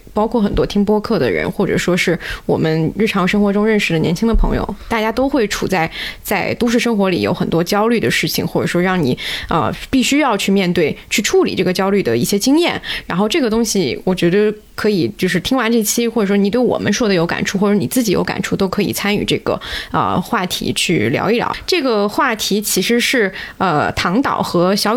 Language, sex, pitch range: Chinese, female, 185-235 Hz